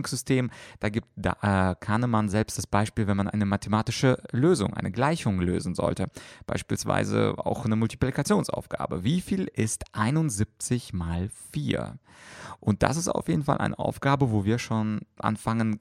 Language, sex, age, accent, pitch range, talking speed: German, male, 30-49, German, 100-130 Hz, 150 wpm